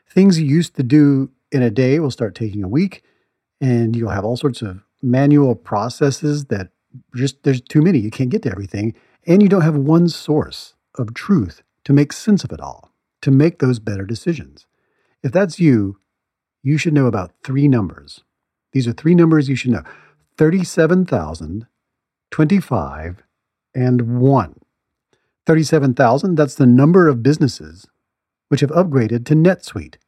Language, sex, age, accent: English, male, 40-59, American